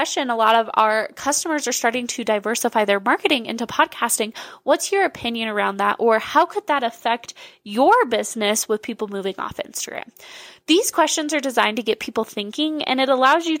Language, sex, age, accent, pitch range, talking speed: English, female, 10-29, American, 220-300 Hz, 185 wpm